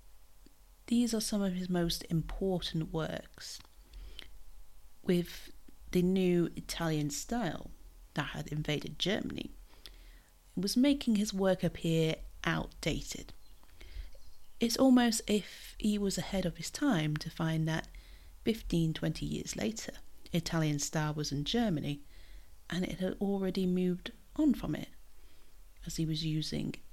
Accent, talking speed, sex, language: British, 125 wpm, female, English